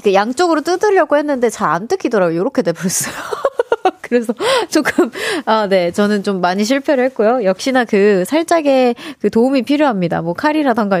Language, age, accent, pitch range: Korean, 20-39, native, 200-305 Hz